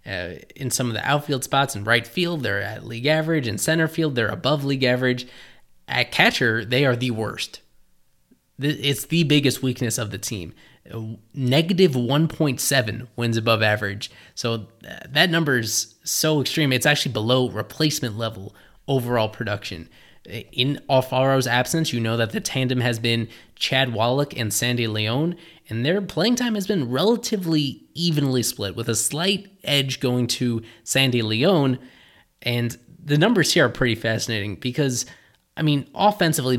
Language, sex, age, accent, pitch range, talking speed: English, male, 20-39, American, 115-145 Hz, 155 wpm